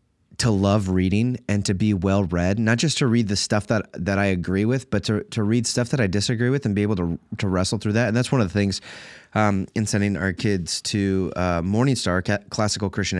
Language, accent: English, American